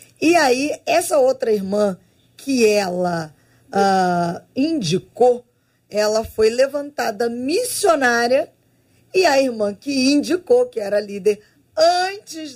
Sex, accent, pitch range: female, Brazilian, 195-265 Hz